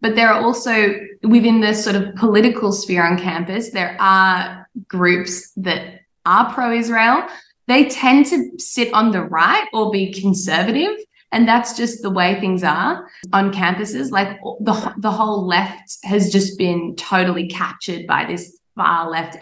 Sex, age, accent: female, 10-29, Australian